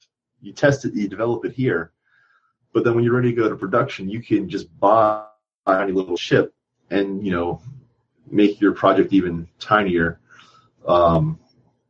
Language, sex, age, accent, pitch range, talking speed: English, male, 30-49, American, 90-125 Hz, 160 wpm